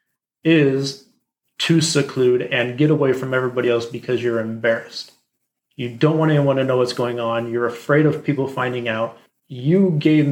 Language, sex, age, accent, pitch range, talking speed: English, male, 30-49, American, 125-150 Hz, 170 wpm